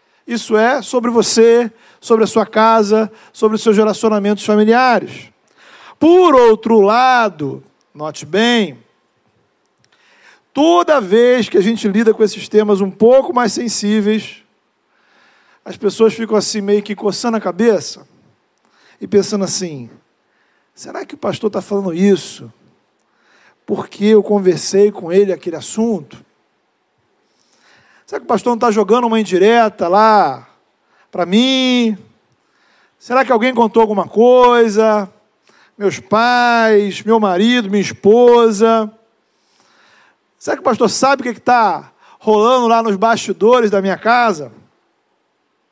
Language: Portuguese